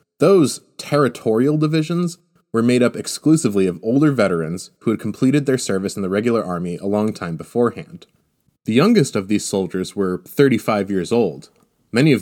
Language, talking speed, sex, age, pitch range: English, 165 wpm, male, 20-39, 95-125 Hz